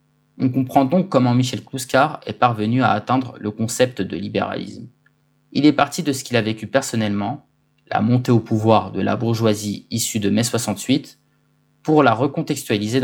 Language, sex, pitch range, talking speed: French, male, 115-145 Hz, 170 wpm